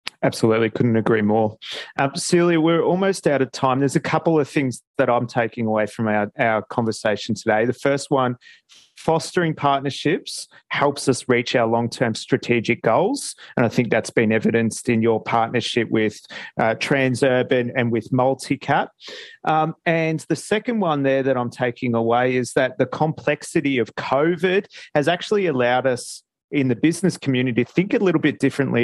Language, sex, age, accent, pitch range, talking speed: English, male, 30-49, Australian, 115-150 Hz, 170 wpm